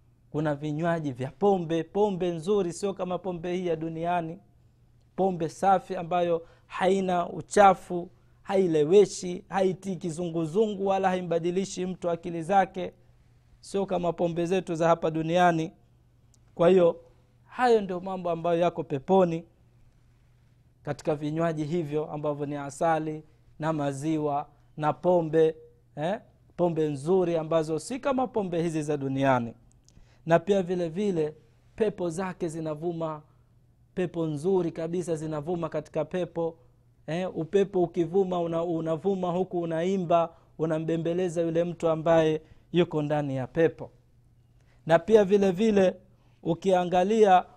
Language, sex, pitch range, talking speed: Swahili, male, 150-180 Hz, 115 wpm